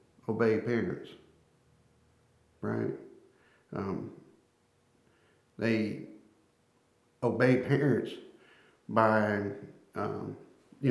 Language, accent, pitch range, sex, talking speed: English, American, 110-125 Hz, male, 55 wpm